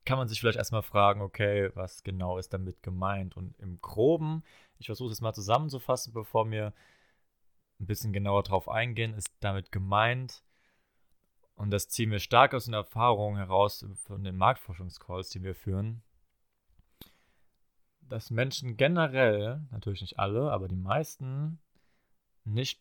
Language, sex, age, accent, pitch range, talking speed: German, male, 30-49, German, 100-120 Hz, 145 wpm